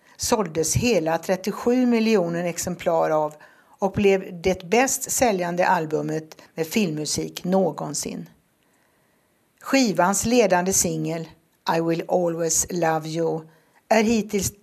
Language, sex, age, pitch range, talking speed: Swedish, female, 60-79, 160-200 Hz, 105 wpm